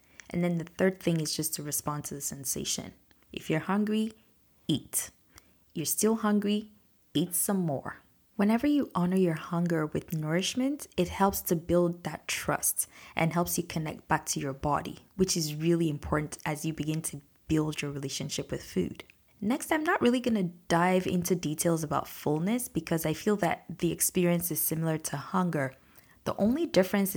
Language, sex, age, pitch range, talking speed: English, female, 20-39, 155-185 Hz, 175 wpm